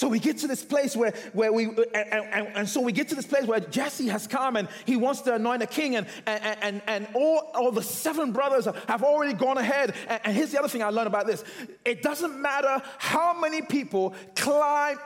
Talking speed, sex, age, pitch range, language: 230 wpm, male, 30-49, 220-295 Hz, English